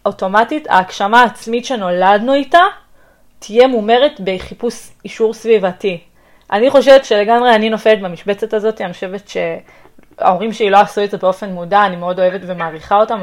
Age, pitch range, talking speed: 20-39, 180-220 Hz, 145 wpm